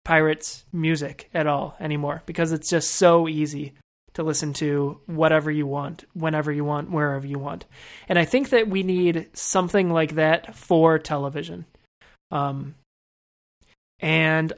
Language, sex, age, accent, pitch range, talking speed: English, male, 20-39, American, 145-170 Hz, 145 wpm